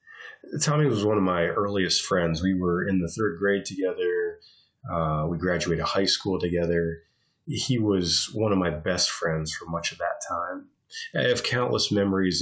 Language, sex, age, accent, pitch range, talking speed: English, male, 30-49, American, 85-105 Hz, 175 wpm